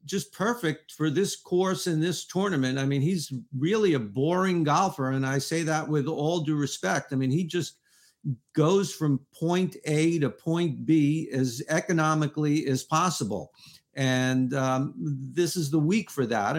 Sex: male